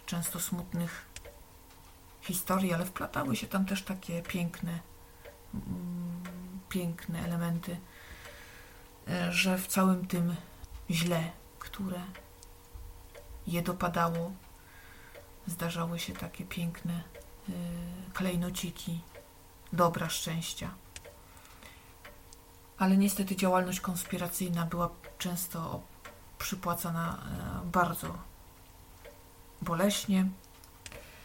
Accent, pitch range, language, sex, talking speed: native, 120-185 Hz, Polish, female, 70 wpm